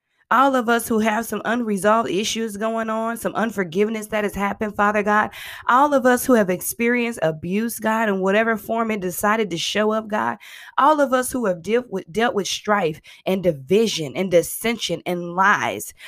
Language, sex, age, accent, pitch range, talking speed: English, female, 20-39, American, 185-235 Hz, 185 wpm